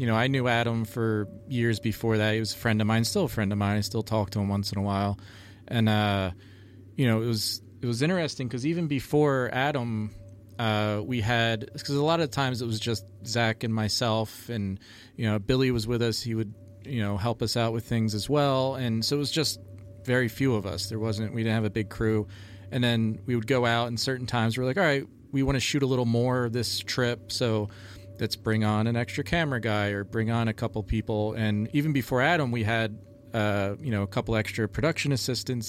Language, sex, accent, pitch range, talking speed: English, male, American, 105-120 Hz, 240 wpm